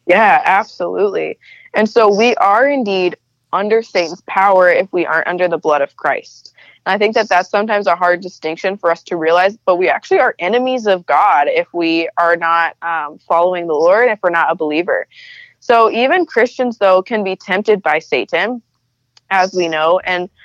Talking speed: 190 wpm